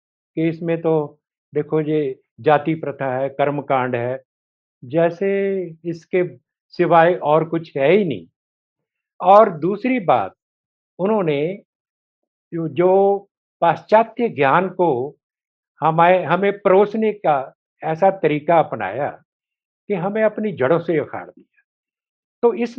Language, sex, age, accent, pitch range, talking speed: English, male, 60-79, Indian, 140-185 Hz, 110 wpm